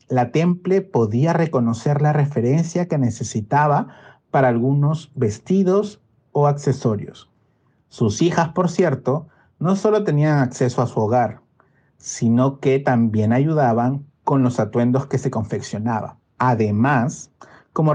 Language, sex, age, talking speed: Spanish, male, 50-69, 120 wpm